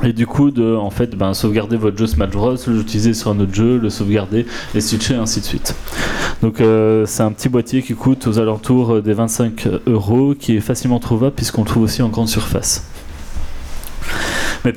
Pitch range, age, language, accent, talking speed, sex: 110-130 Hz, 20-39, French, French, 190 wpm, male